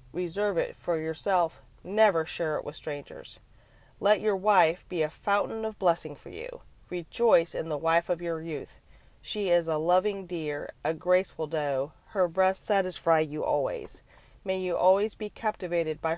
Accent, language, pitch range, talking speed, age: American, English, 155-200 Hz, 165 wpm, 40-59